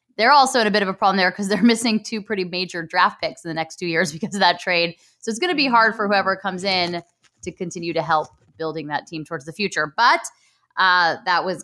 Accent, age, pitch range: American, 20-39, 160-210 Hz